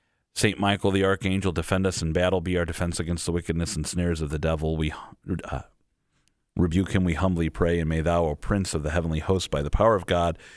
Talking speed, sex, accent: 225 wpm, male, American